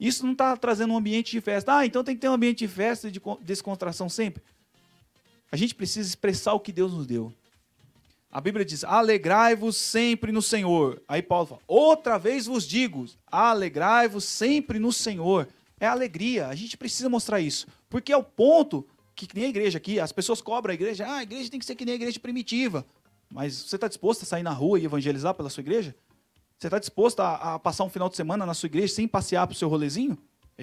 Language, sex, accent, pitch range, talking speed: Portuguese, male, Brazilian, 180-240 Hz, 225 wpm